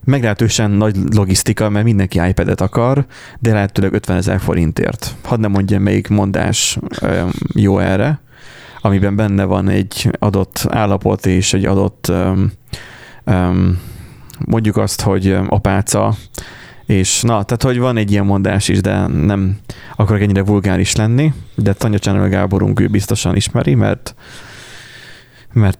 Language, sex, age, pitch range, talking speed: Hungarian, male, 30-49, 100-120 Hz, 135 wpm